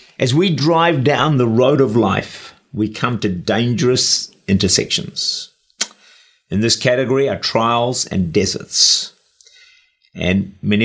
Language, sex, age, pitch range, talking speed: English, male, 50-69, 100-135 Hz, 120 wpm